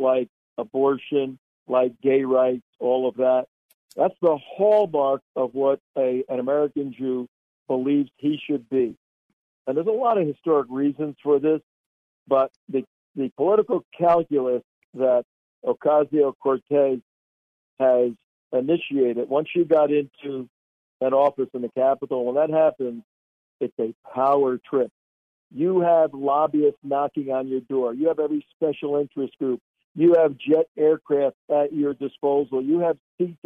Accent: American